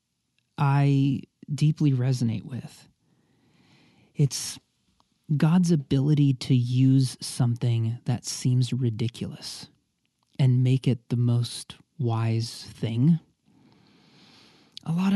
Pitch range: 120-145 Hz